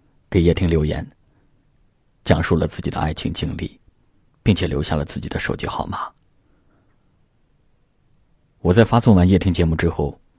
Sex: male